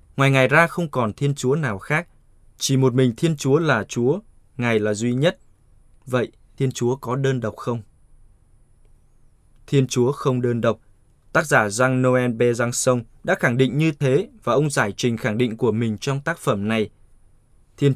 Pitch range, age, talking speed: 115-140 Hz, 20-39, 185 wpm